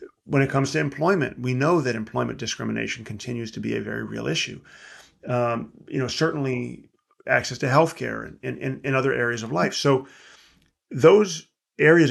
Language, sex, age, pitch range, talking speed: English, male, 40-59, 115-140 Hz, 170 wpm